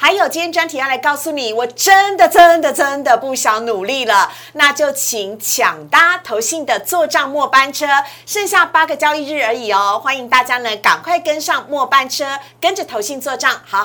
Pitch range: 235-315 Hz